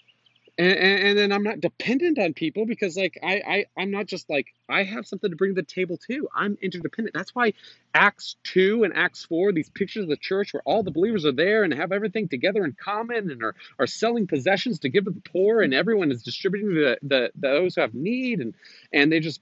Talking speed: 230 wpm